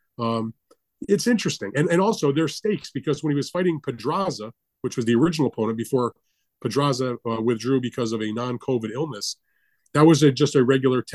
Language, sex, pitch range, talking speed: English, male, 115-150 Hz, 185 wpm